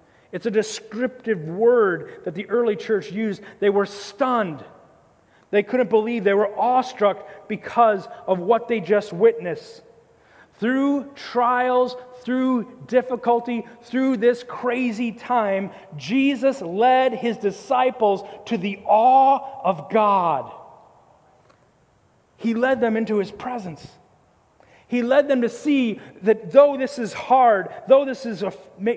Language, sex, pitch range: English, male, 205-255 Hz